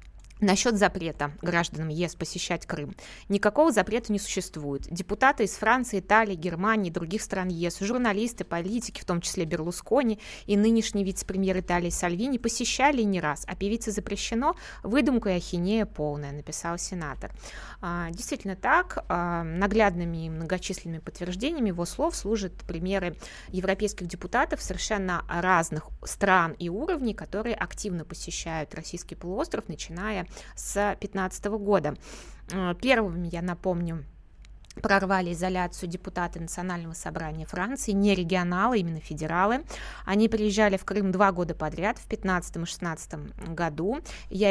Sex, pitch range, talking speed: female, 170-215 Hz, 125 wpm